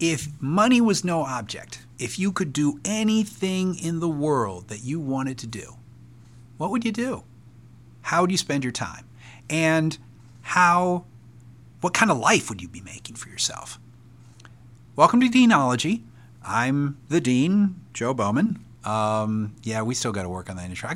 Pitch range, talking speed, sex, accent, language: 120-165 Hz, 165 wpm, male, American, English